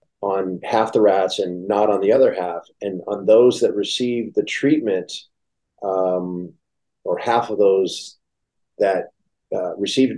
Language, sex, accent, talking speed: English, male, American, 145 wpm